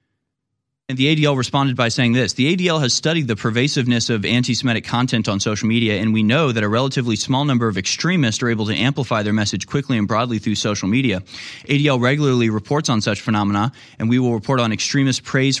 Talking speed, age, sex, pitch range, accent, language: 210 wpm, 30-49, male, 110-135 Hz, American, English